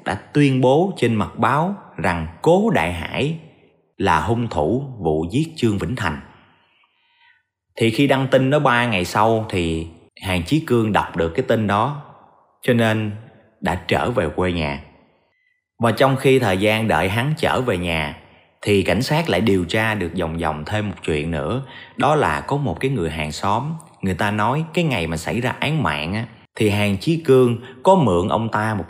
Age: 30-49